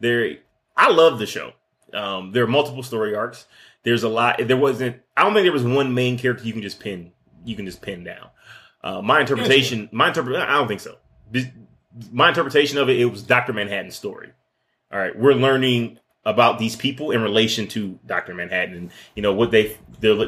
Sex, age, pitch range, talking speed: male, 20-39, 105-135 Hz, 205 wpm